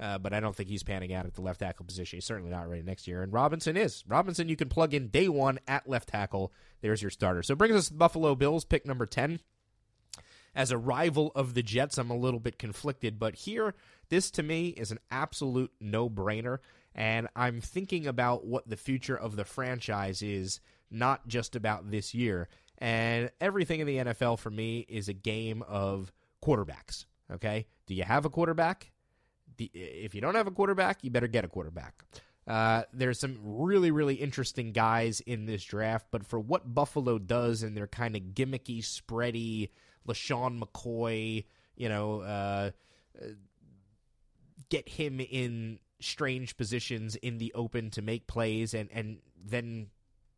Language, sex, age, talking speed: English, male, 30-49, 180 wpm